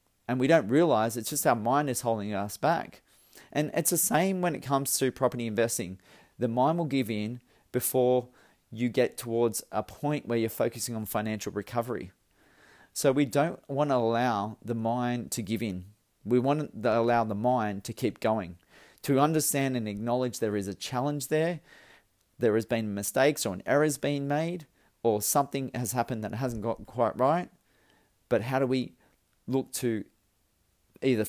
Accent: Australian